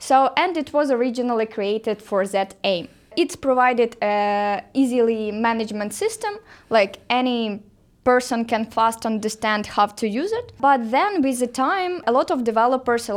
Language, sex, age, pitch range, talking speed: English, female, 20-39, 215-260 Hz, 155 wpm